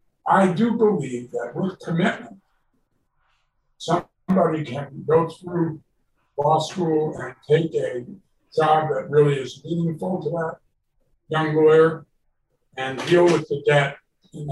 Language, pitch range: English, 145-175 Hz